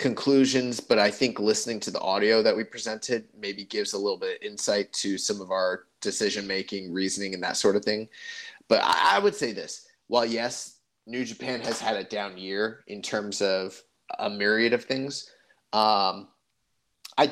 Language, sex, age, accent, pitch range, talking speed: English, male, 30-49, American, 105-140 Hz, 180 wpm